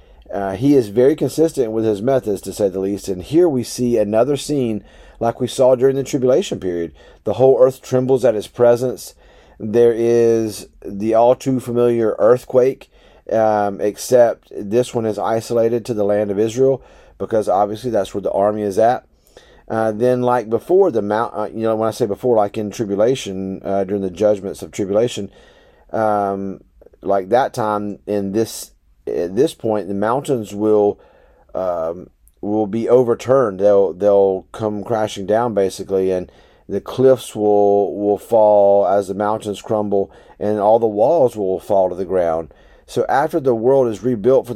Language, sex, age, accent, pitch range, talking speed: English, male, 40-59, American, 100-125 Hz, 170 wpm